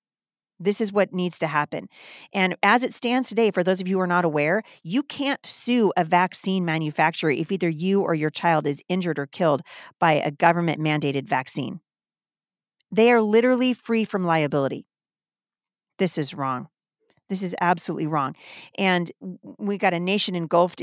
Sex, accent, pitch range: female, American, 160-200 Hz